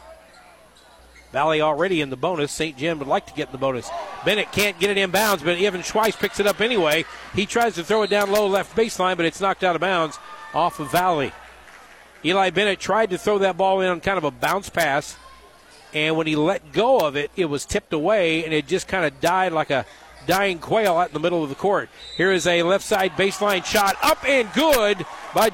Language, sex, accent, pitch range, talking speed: English, male, American, 165-205 Hz, 225 wpm